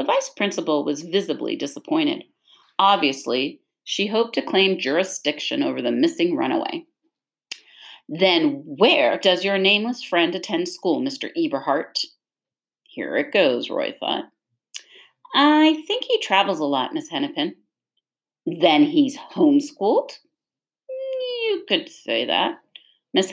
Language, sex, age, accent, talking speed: English, female, 40-59, American, 120 wpm